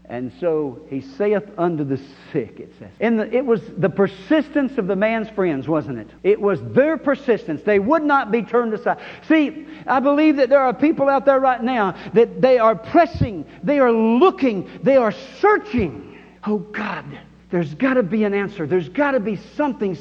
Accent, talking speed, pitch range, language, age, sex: American, 190 wpm, 170-255 Hz, English, 60-79, male